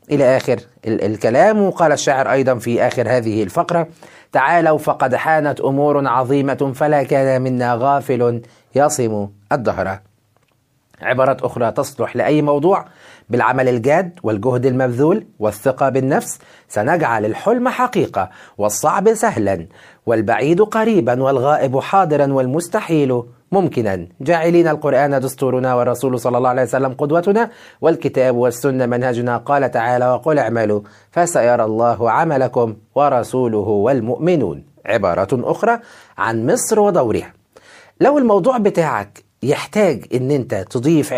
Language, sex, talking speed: Arabic, male, 110 wpm